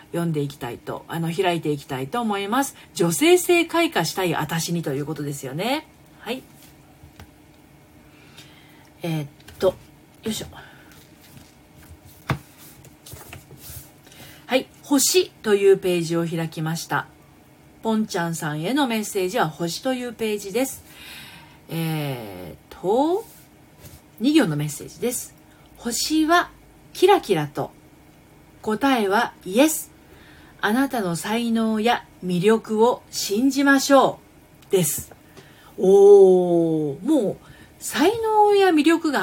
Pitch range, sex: 155-250 Hz, female